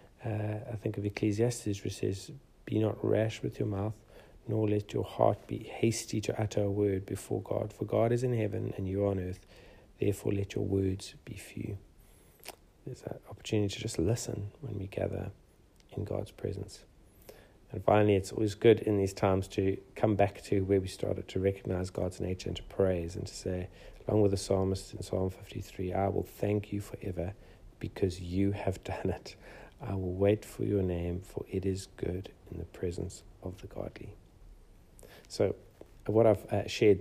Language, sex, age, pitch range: English, male, 40-59, 95-105 Hz